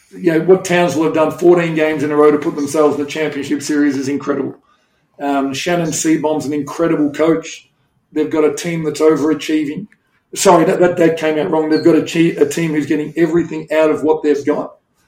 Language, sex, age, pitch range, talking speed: English, male, 40-59, 150-170 Hz, 205 wpm